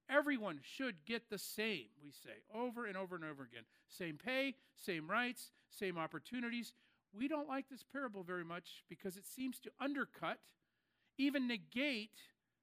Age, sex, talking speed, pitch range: 50-69, male, 155 wpm, 180-250 Hz